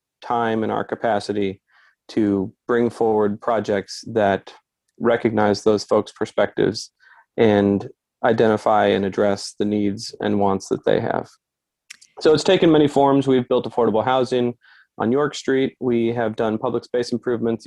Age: 30-49